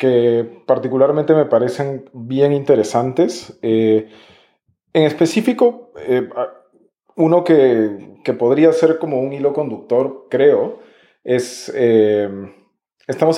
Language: Spanish